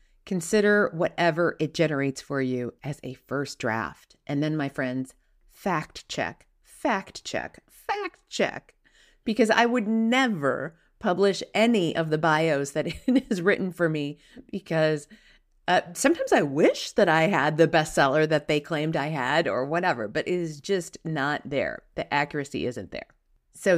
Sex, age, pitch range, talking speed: female, 40-59, 145-215 Hz, 160 wpm